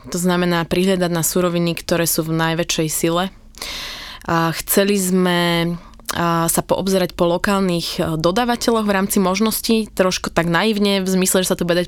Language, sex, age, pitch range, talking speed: Slovak, female, 20-39, 170-195 Hz, 150 wpm